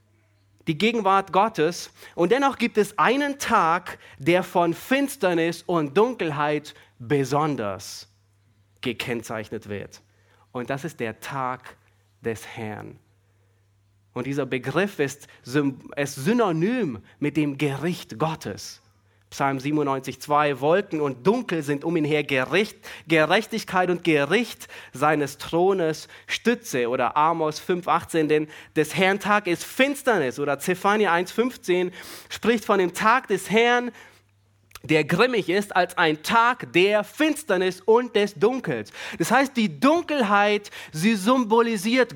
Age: 30-49